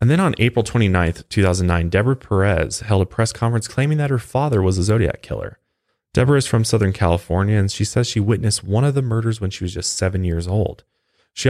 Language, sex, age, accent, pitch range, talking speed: English, male, 30-49, American, 95-120 Hz, 220 wpm